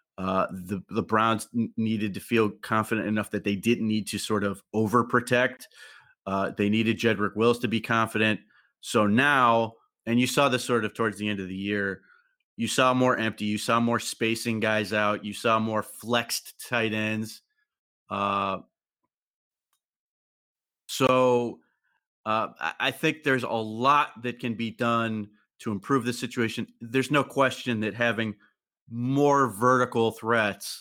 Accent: American